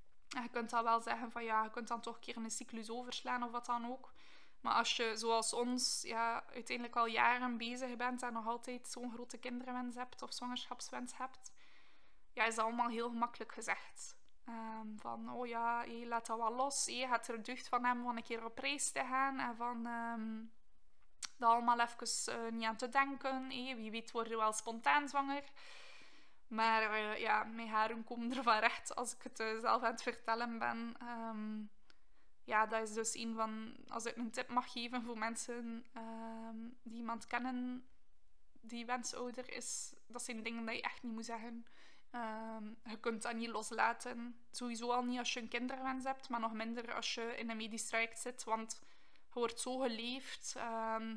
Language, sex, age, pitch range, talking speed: Dutch, female, 20-39, 225-245 Hz, 200 wpm